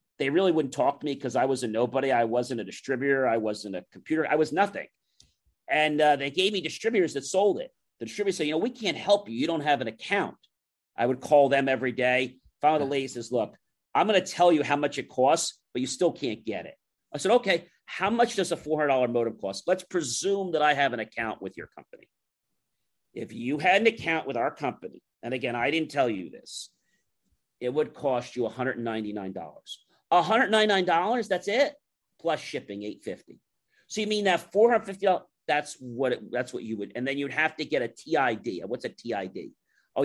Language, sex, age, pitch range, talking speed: English, male, 40-59, 130-185 Hz, 225 wpm